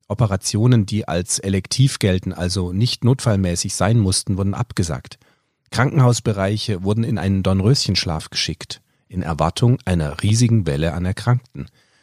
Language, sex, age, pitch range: German, male, 40-59, 95-120 Hz